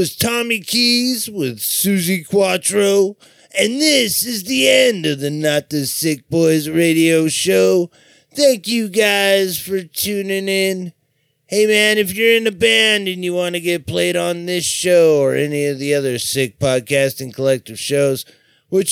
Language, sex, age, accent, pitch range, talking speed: English, male, 30-49, American, 140-190 Hz, 160 wpm